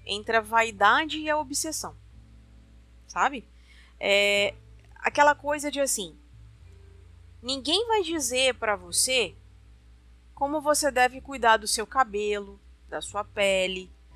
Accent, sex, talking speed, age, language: Brazilian, female, 110 wpm, 20-39, Portuguese